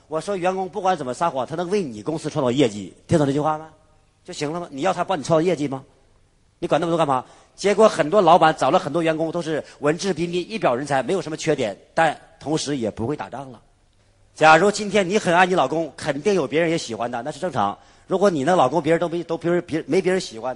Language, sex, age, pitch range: Chinese, male, 40-59, 140-180 Hz